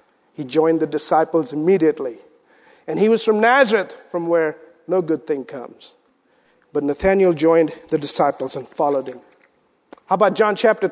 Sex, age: male, 50-69